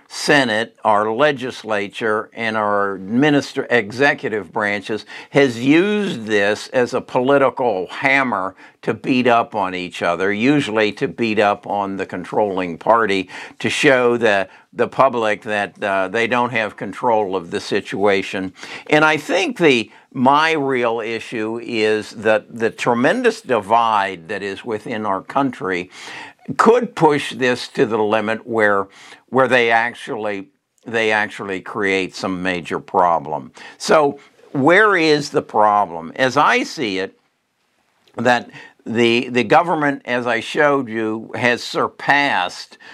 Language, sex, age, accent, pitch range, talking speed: English, male, 60-79, American, 100-130 Hz, 135 wpm